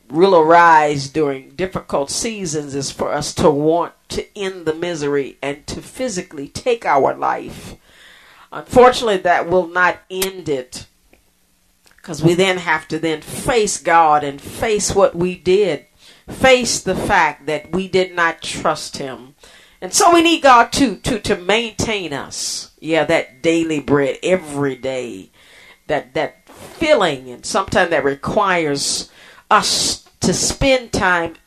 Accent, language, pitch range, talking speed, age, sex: American, English, 145-195 Hz, 145 wpm, 40-59, female